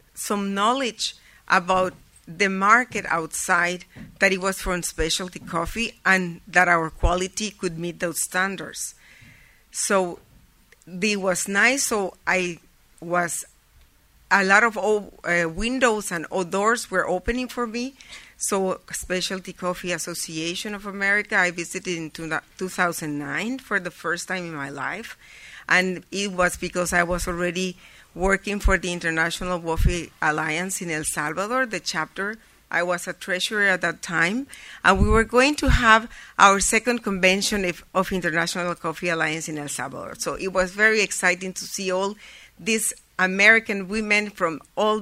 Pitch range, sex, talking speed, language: 175-210 Hz, female, 150 wpm, English